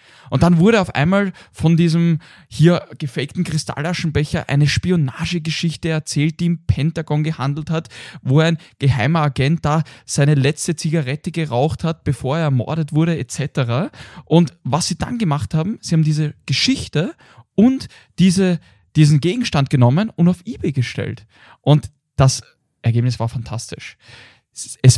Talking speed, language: 140 wpm, German